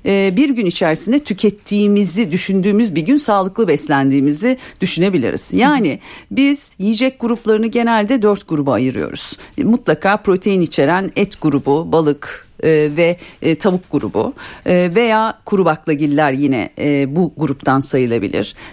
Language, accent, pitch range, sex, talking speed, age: Turkish, native, 155-230 Hz, female, 110 wpm, 40-59